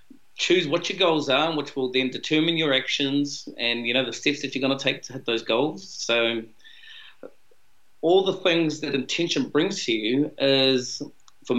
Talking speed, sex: 185 wpm, male